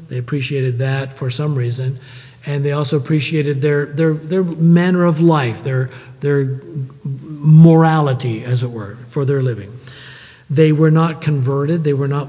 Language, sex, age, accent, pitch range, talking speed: English, male, 50-69, American, 130-155 Hz, 150 wpm